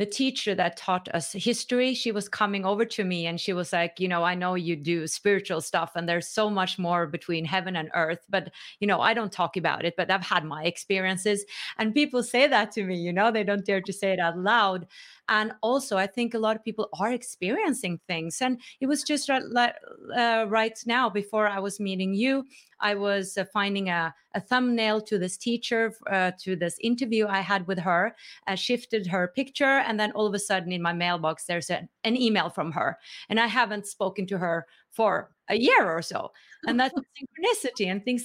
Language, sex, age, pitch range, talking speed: English, female, 30-49, 185-235 Hz, 215 wpm